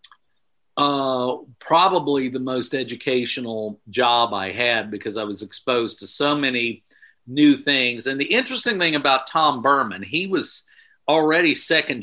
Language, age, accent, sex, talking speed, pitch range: English, 50-69, American, male, 140 wpm, 110-140 Hz